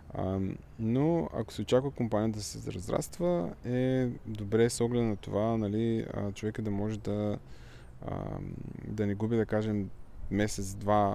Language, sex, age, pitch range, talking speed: Bulgarian, male, 20-39, 100-125 Hz, 145 wpm